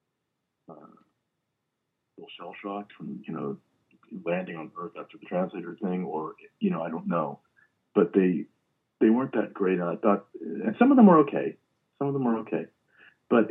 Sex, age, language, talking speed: male, 50-69, English, 185 wpm